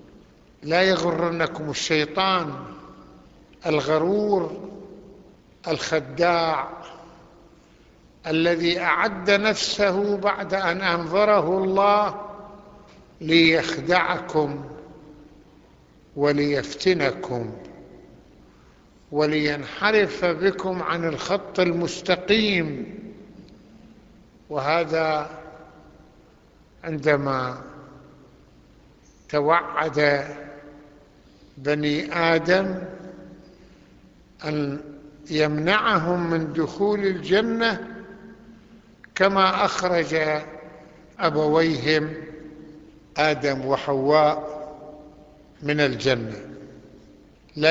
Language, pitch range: Arabic, 150-190 Hz